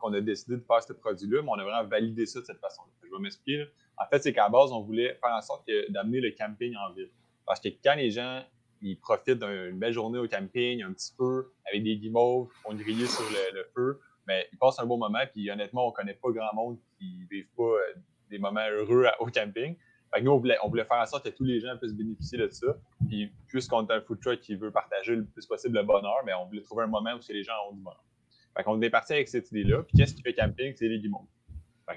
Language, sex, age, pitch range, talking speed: French, male, 20-39, 110-135 Hz, 270 wpm